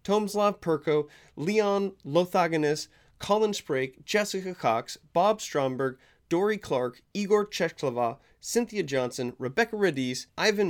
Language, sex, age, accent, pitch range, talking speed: English, male, 30-49, American, 150-205 Hz, 105 wpm